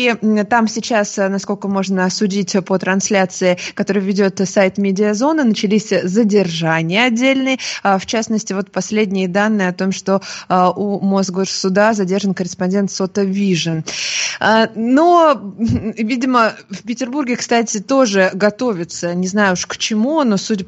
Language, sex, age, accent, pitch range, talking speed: Russian, female, 20-39, native, 185-225 Hz, 120 wpm